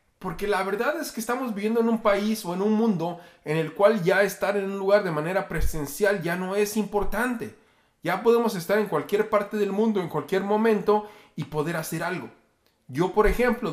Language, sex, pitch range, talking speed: Spanish, male, 155-210 Hz, 205 wpm